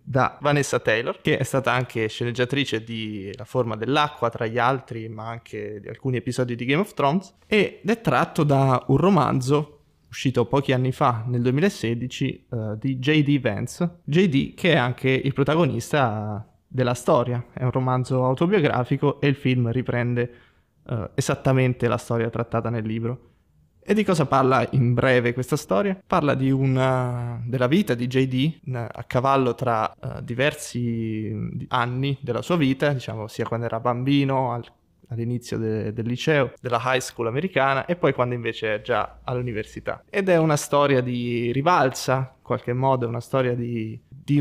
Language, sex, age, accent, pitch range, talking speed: Italian, male, 20-39, native, 120-140 Hz, 160 wpm